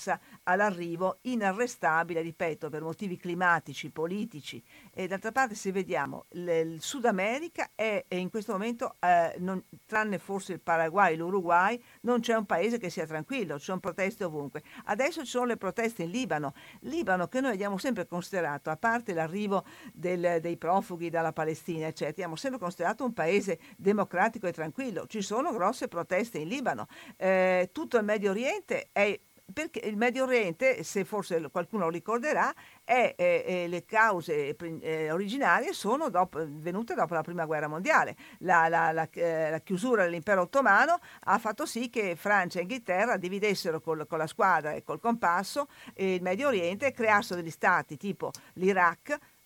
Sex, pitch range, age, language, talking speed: female, 170-230 Hz, 50-69, Italian, 165 wpm